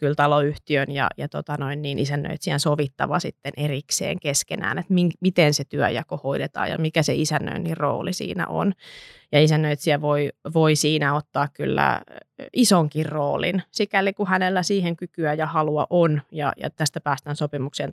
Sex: female